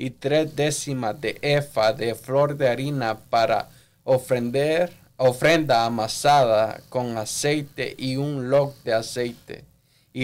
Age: 20-39